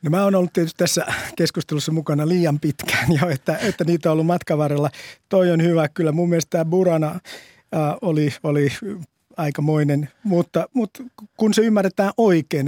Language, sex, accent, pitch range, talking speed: Finnish, male, native, 150-190 Hz, 160 wpm